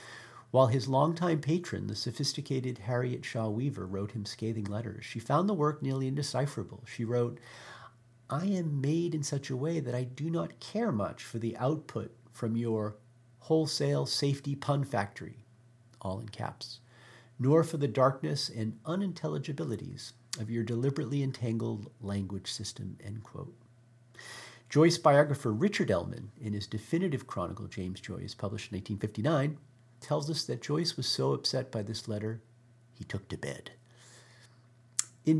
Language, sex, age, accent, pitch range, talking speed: English, male, 40-59, American, 110-140 Hz, 150 wpm